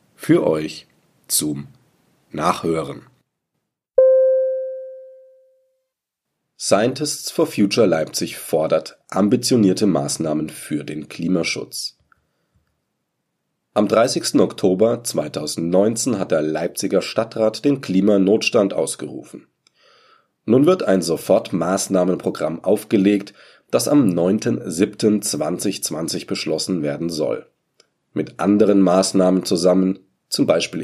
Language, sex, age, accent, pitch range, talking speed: German, male, 40-59, German, 80-110 Hz, 80 wpm